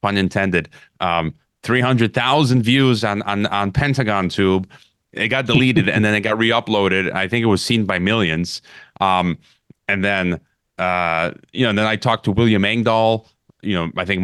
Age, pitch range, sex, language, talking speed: 30-49, 95-115 Hz, male, English, 175 wpm